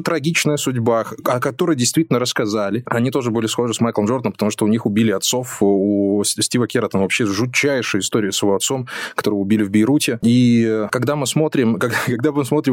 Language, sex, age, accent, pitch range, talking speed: Russian, male, 20-39, native, 115-160 Hz, 190 wpm